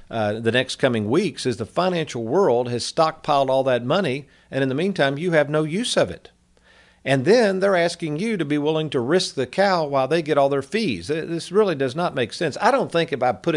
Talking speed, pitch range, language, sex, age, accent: 240 wpm, 115-145 Hz, English, male, 50-69, American